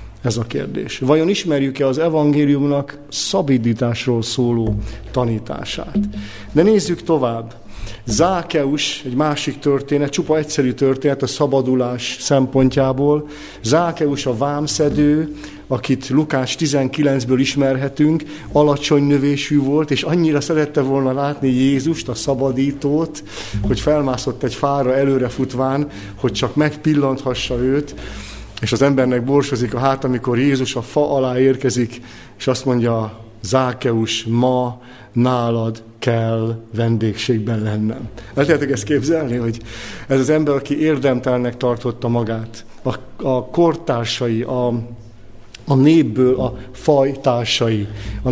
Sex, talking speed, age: male, 115 wpm, 50-69